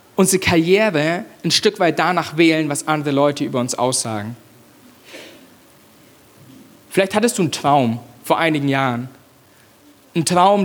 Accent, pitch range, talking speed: German, 155-185 Hz, 130 wpm